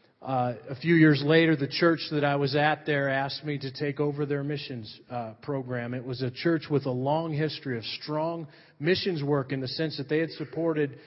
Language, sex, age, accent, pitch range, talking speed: English, male, 40-59, American, 130-155 Hz, 215 wpm